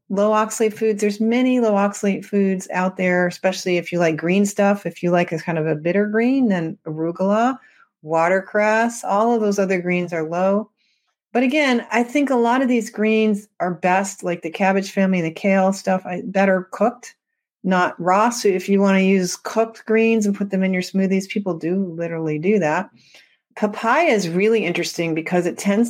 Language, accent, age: English, American, 40-59